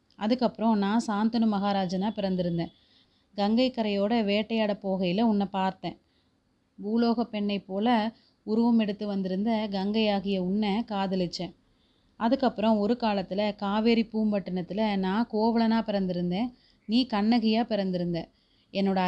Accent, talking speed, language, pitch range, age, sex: native, 100 wpm, Tamil, 190-225 Hz, 30-49, female